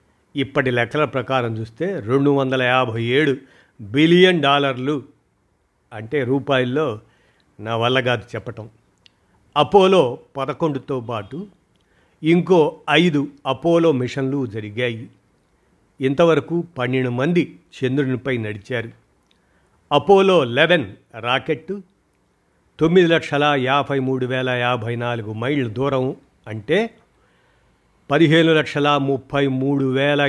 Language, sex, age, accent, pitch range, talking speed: Telugu, male, 50-69, native, 125-150 Hz, 80 wpm